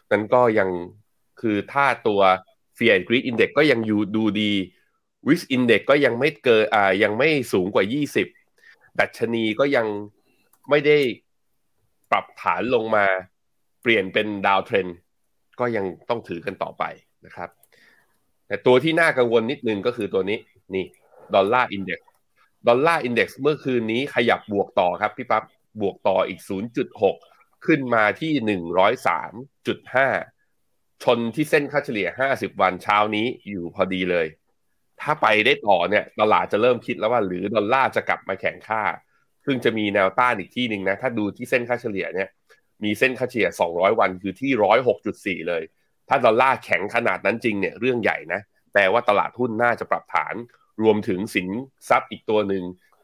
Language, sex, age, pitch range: Thai, male, 20-39, 100-125 Hz